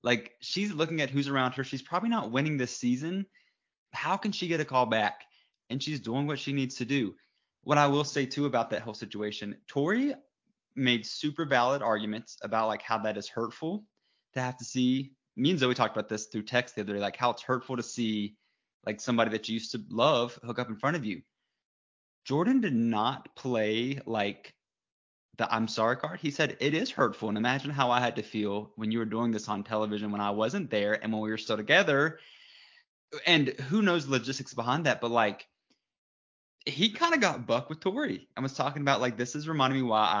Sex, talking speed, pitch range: male, 220 wpm, 110-145 Hz